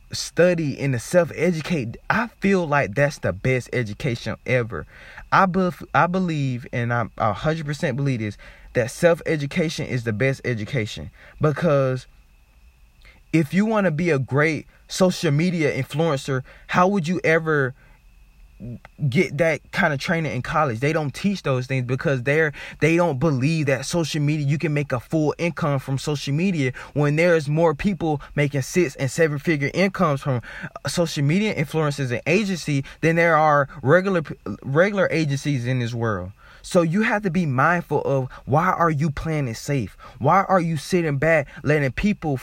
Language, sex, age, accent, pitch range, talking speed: English, male, 20-39, American, 135-170 Hz, 165 wpm